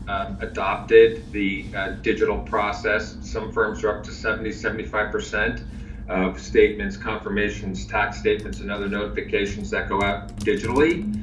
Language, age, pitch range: English, 40-59, 100-120 Hz